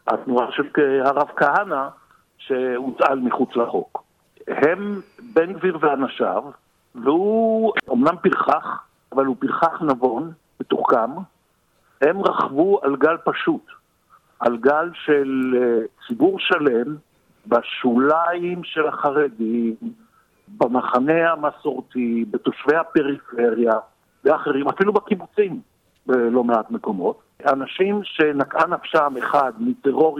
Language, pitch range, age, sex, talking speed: Hebrew, 130-165 Hz, 60-79, male, 95 wpm